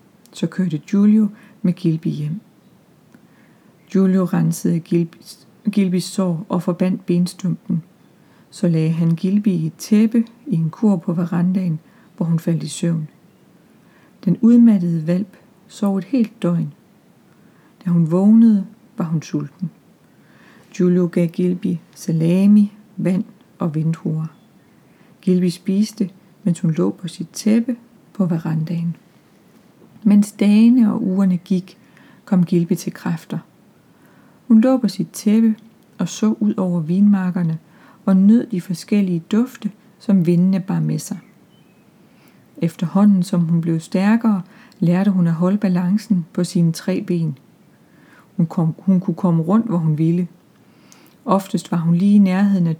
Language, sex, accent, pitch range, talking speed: Danish, female, native, 175-210 Hz, 135 wpm